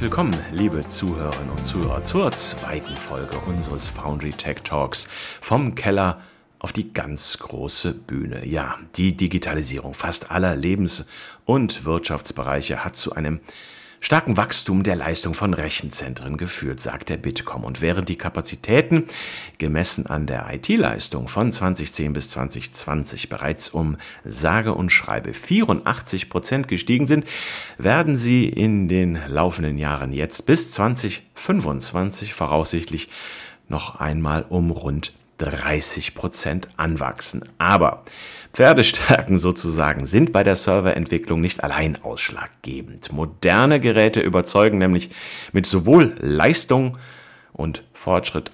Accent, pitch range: German, 75-100 Hz